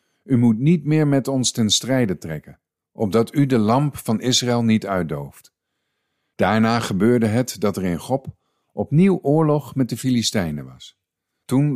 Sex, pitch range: male, 90-125 Hz